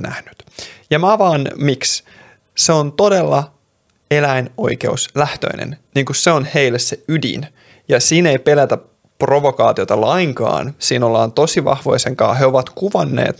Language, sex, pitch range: Finnish, male, 120-150 Hz